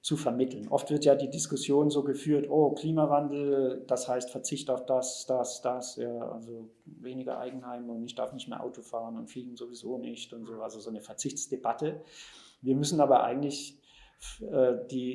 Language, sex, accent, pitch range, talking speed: German, male, German, 120-140 Hz, 180 wpm